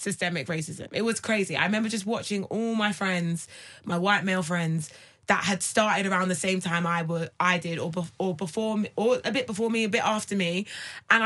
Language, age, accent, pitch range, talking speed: English, 20-39, British, 185-250 Hz, 205 wpm